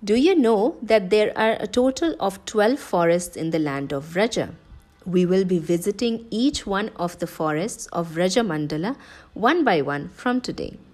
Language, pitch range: English, 170-250 Hz